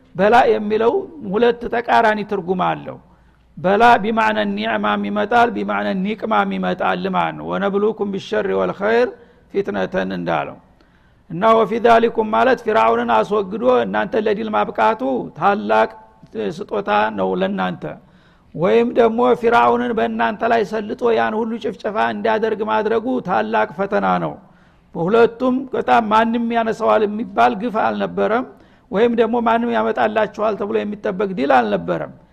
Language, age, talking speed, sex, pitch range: Amharic, 60-79, 115 wpm, male, 205-235 Hz